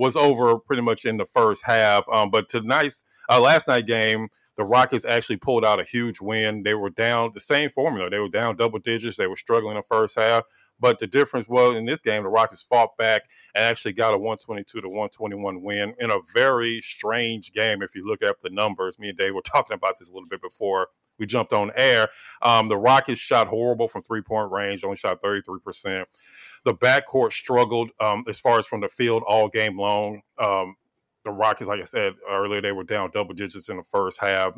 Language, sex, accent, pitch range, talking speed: English, male, American, 100-115 Hz, 220 wpm